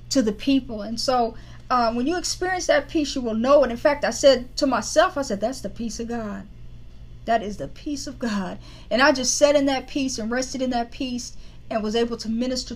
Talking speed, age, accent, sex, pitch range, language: 240 wpm, 40-59, American, female, 220-270 Hz, English